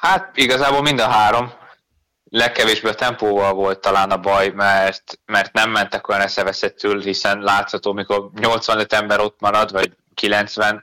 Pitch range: 100-110 Hz